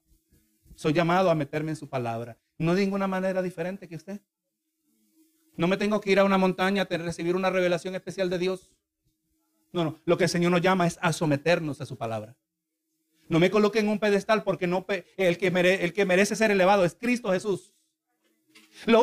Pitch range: 175-280 Hz